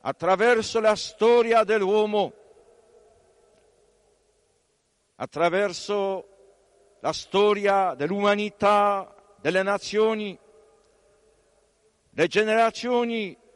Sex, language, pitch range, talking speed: male, Italian, 185-220 Hz, 55 wpm